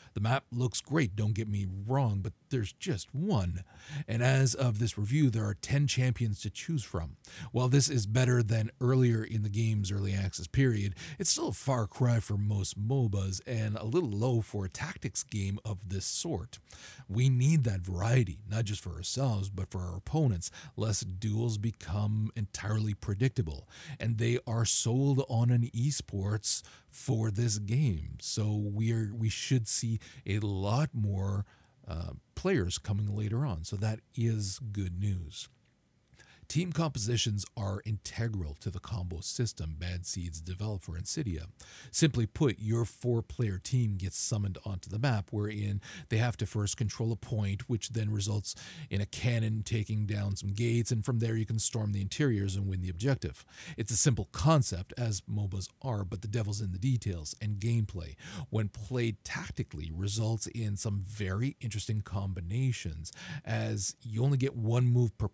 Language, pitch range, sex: English, 100-120 Hz, male